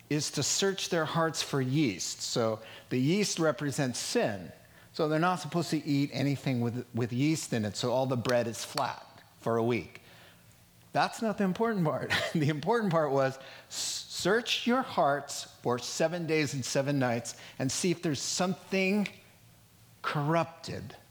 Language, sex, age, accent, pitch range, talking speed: English, male, 50-69, American, 125-165 Hz, 165 wpm